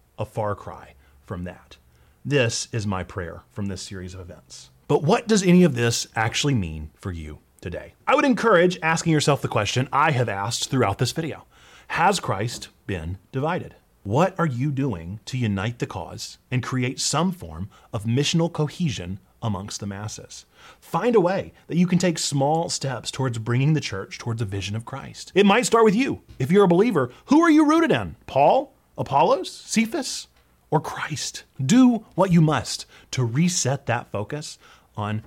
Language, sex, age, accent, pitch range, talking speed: English, male, 30-49, American, 115-185 Hz, 180 wpm